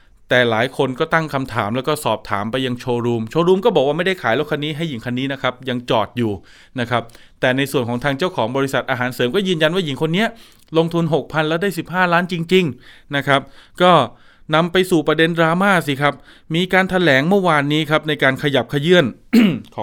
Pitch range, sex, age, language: 115-160 Hz, male, 20-39, Thai